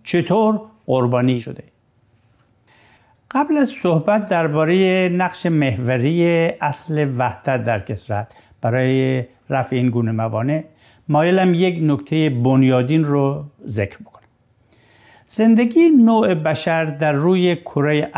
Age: 60-79